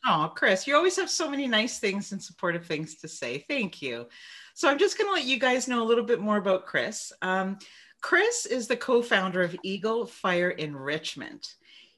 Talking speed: 200 wpm